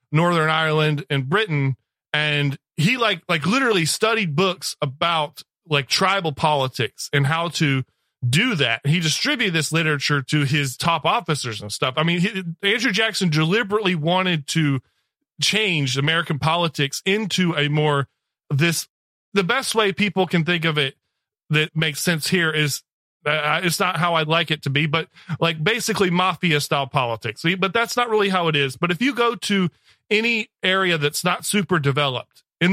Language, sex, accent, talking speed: English, male, American, 170 wpm